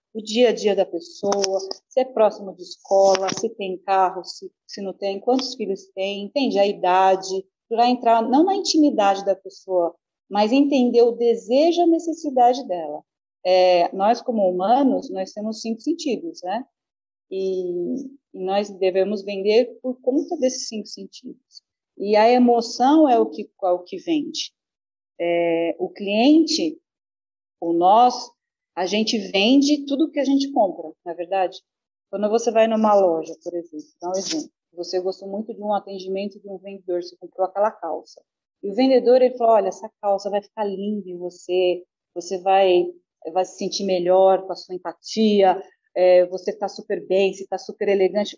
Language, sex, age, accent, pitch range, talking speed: Portuguese, female, 40-59, Brazilian, 190-255 Hz, 170 wpm